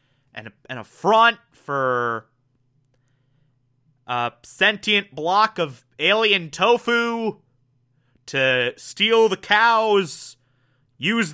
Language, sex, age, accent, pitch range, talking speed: English, male, 30-49, American, 130-210 Hz, 80 wpm